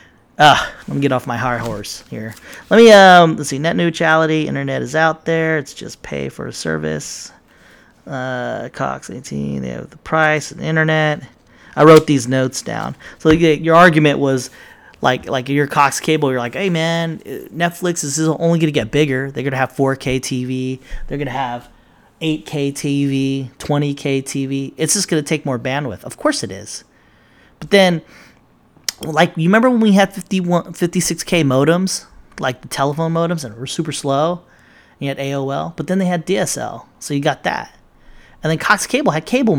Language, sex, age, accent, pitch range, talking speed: English, male, 30-49, American, 130-170 Hz, 190 wpm